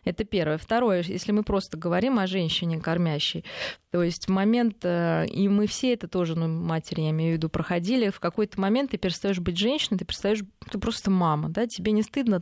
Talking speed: 205 wpm